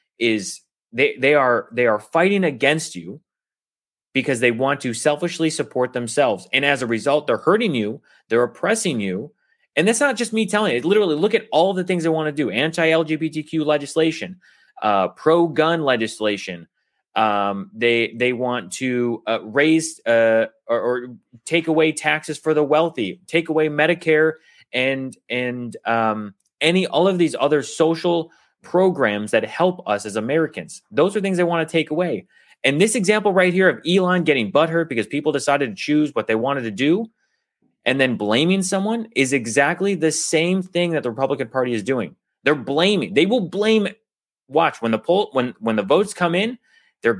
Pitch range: 125-180 Hz